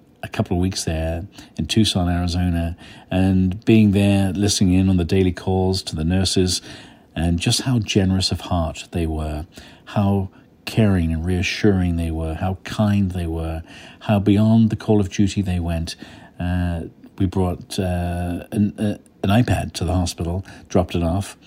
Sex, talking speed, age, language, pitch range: male, 170 wpm, 50-69, English, 85-100 Hz